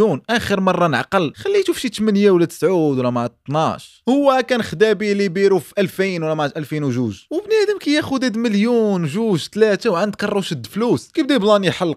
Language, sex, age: Arabic, male, 20-39